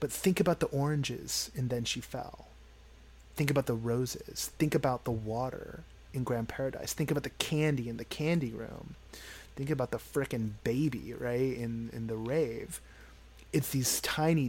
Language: English